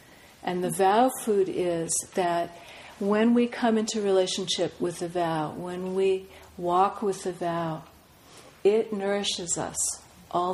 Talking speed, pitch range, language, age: 135 wpm, 170-200 Hz, English, 50-69